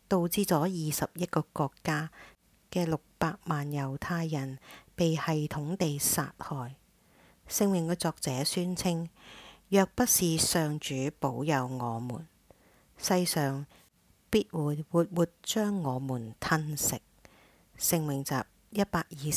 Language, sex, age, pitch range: English, female, 50-69, 135-170 Hz